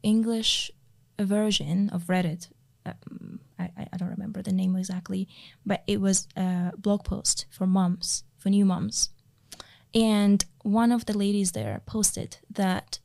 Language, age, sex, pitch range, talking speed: English, 20-39, female, 145-205 Hz, 145 wpm